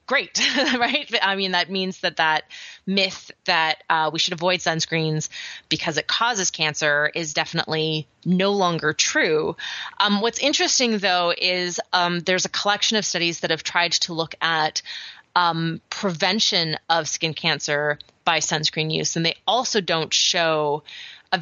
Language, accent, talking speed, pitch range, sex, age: English, American, 155 wpm, 160-190 Hz, female, 30-49